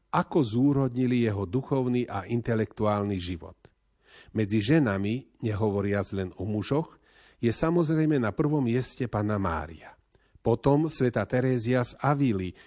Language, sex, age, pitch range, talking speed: Slovak, male, 40-59, 105-130 Hz, 120 wpm